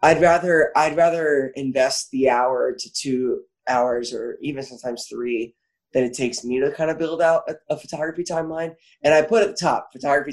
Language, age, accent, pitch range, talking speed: English, 20-39, American, 130-170 Hz, 200 wpm